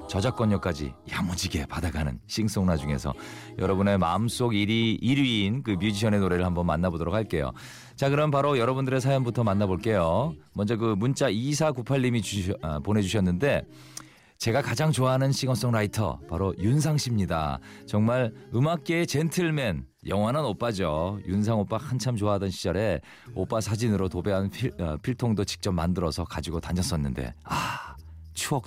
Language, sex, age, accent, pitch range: Korean, male, 40-59, native, 90-130 Hz